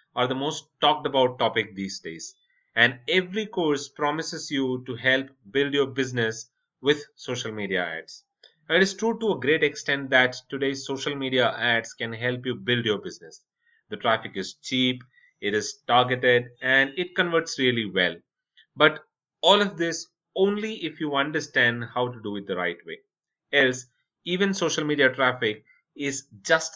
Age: 30-49